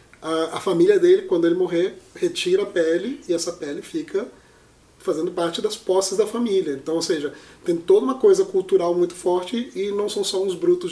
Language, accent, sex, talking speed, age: Portuguese, Brazilian, male, 190 wpm, 30-49